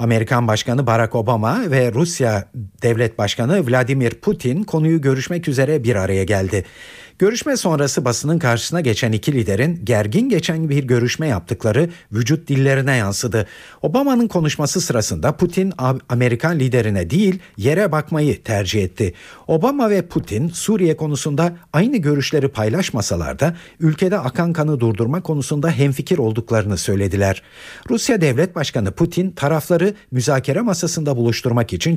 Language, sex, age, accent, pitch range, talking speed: Turkish, male, 50-69, native, 115-165 Hz, 125 wpm